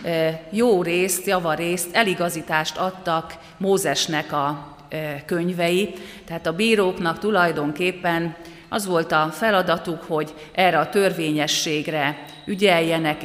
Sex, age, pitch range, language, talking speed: female, 40-59, 155-185 Hz, Hungarian, 95 wpm